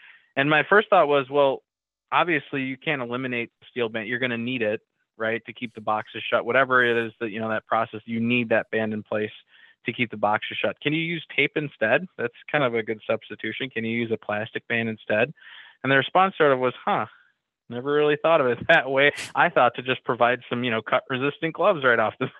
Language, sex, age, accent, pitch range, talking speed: English, male, 20-39, American, 110-130 Hz, 235 wpm